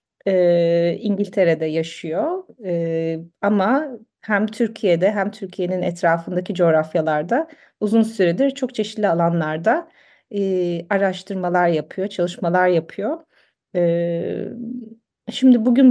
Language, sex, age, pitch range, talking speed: Turkish, female, 40-59, 175-230 Hz, 90 wpm